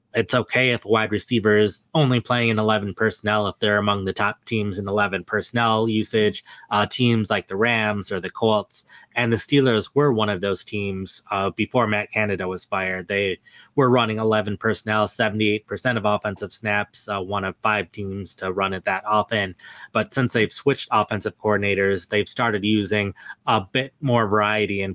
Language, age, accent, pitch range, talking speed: English, 20-39, American, 95-115 Hz, 180 wpm